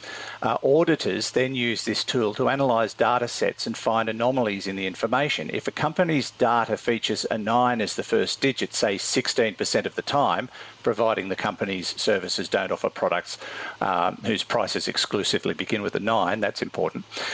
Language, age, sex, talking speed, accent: English, 50-69, male, 170 wpm, Australian